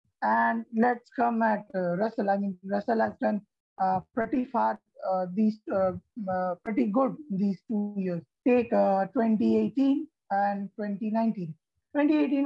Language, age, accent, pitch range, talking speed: English, 20-39, Indian, 205-260 Hz, 140 wpm